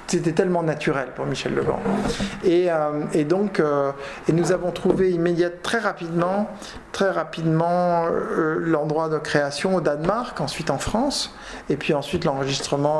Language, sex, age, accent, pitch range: Japanese, male, 50-69, French, 145-185 Hz